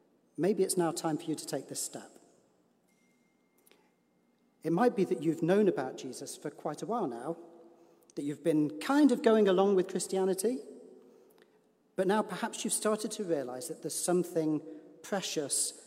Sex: male